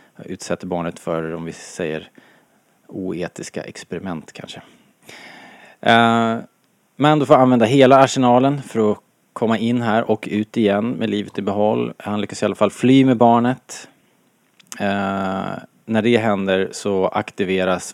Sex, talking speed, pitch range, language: male, 140 wpm, 90-115 Hz, Swedish